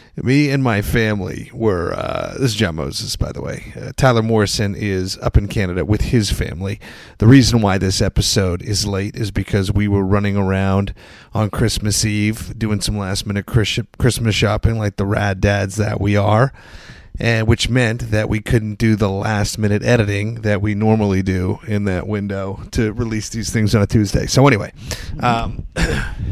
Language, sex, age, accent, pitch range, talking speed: English, male, 30-49, American, 100-120 Hz, 180 wpm